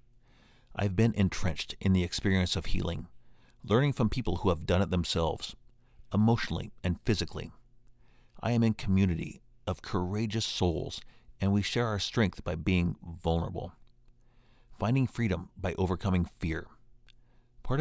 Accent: American